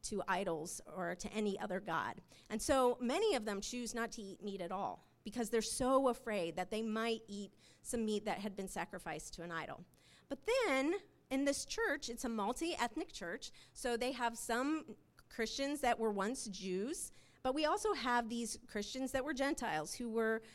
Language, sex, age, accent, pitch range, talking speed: English, female, 30-49, American, 200-265 Hz, 190 wpm